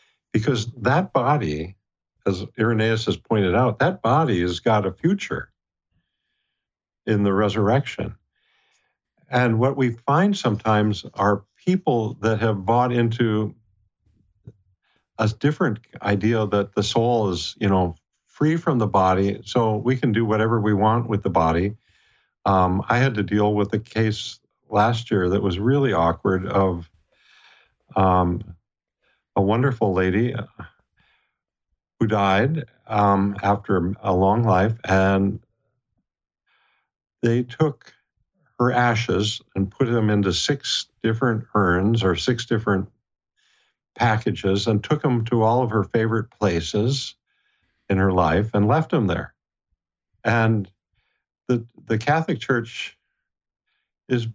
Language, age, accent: English, 50-69, American